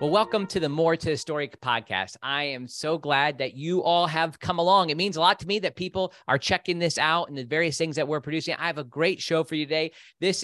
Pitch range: 125-165 Hz